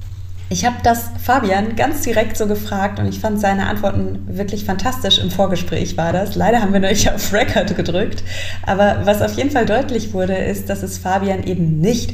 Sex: female